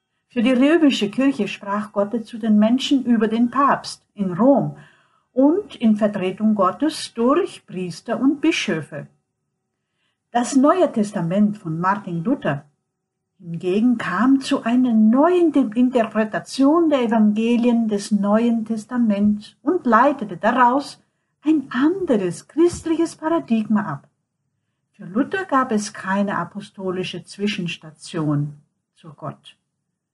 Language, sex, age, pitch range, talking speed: Portuguese, female, 60-79, 185-255 Hz, 110 wpm